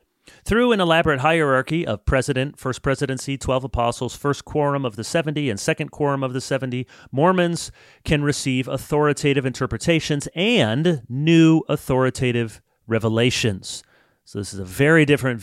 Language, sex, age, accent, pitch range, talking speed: English, male, 30-49, American, 110-150 Hz, 140 wpm